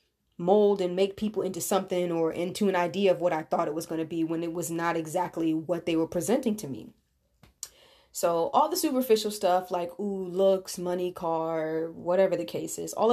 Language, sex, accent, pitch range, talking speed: English, female, American, 175-210 Hz, 205 wpm